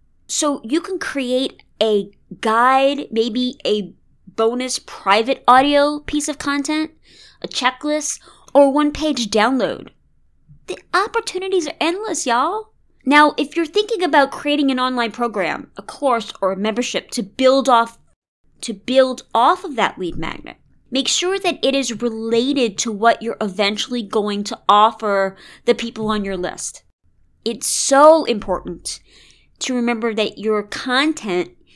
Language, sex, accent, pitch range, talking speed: English, female, American, 195-270 Hz, 140 wpm